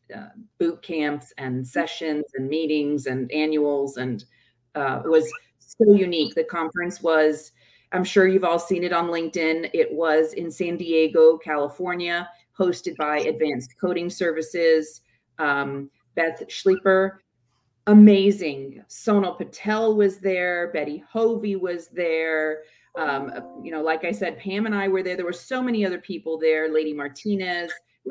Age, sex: 40-59, female